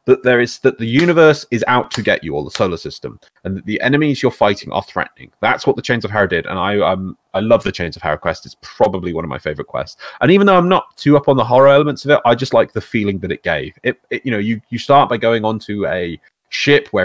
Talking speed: 285 wpm